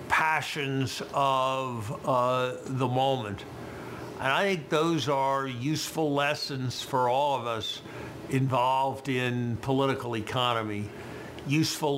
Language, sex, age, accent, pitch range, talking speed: English, male, 50-69, American, 130-150 Hz, 105 wpm